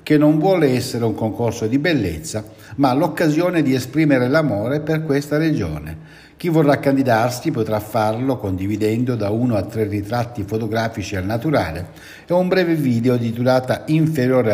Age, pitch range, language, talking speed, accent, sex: 60-79, 105-145 Hz, Italian, 155 wpm, native, male